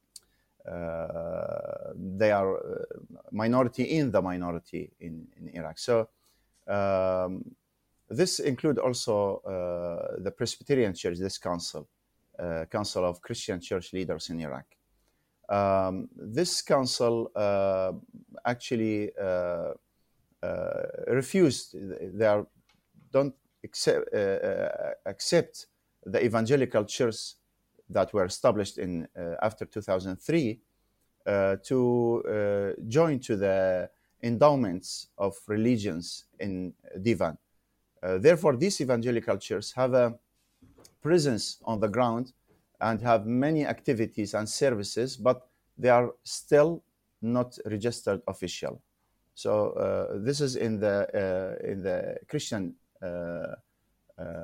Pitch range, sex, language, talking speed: 95-135 Hz, male, English, 110 wpm